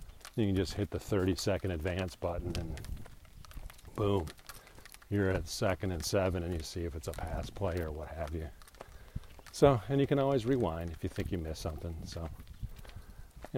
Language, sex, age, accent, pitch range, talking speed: English, male, 40-59, American, 85-105 Hz, 185 wpm